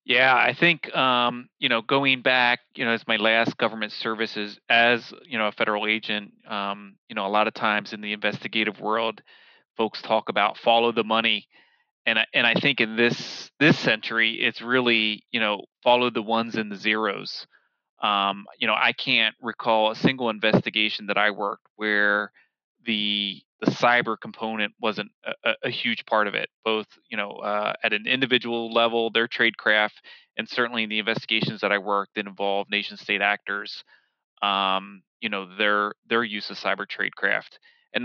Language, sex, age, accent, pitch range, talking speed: English, male, 30-49, American, 105-115 Hz, 180 wpm